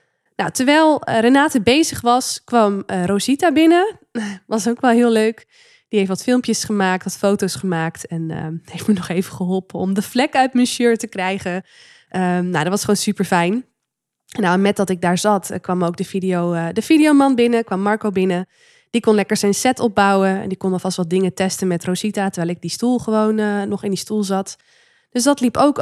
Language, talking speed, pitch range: Dutch, 220 wpm, 190-250 Hz